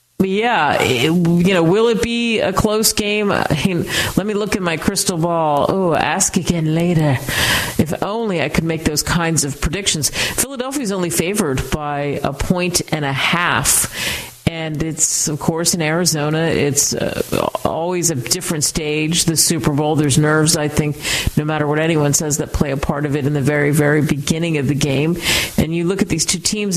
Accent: American